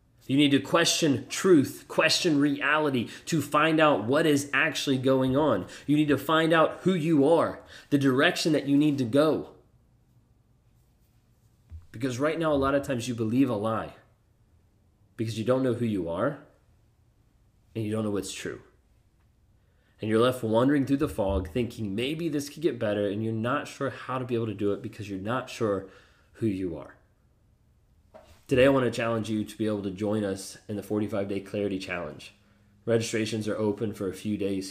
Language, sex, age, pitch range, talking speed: English, male, 30-49, 105-135 Hz, 190 wpm